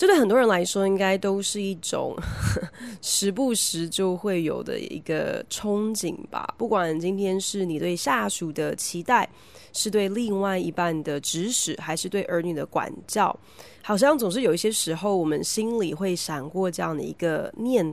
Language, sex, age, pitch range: Chinese, female, 20-39, 170-230 Hz